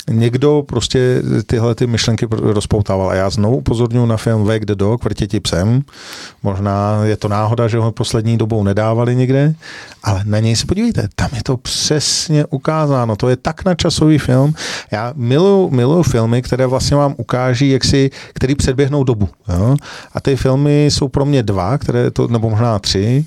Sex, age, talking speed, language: male, 40-59, 180 wpm, Czech